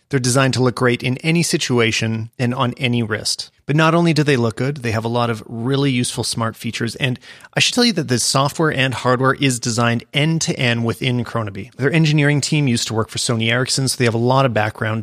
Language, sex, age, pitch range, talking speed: English, male, 30-49, 115-145 Hz, 235 wpm